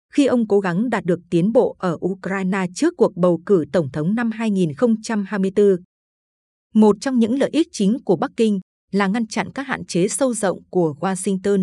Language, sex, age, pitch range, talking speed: Vietnamese, female, 20-39, 180-225 Hz, 190 wpm